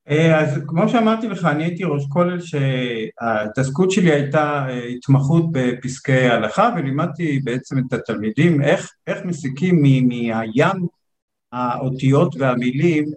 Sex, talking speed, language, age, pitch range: male, 115 wpm, Hebrew, 50-69, 130-160 Hz